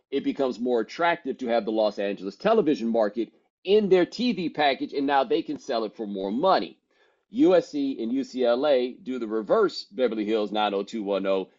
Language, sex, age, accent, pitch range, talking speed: English, male, 40-59, American, 115-165 Hz, 170 wpm